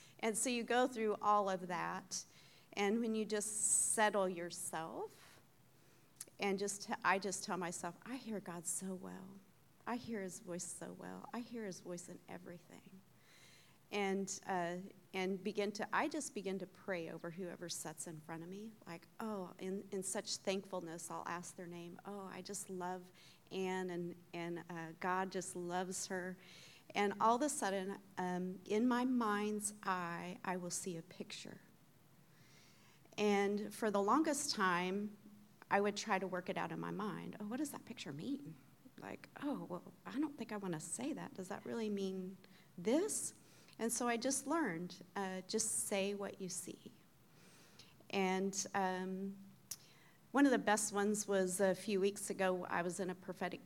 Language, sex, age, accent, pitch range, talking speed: English, female, 40-59, American, 180-210 Hz, 175 wpm